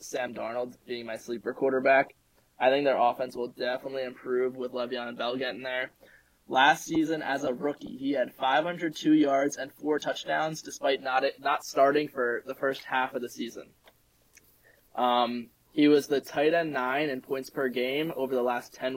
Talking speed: 185 wpm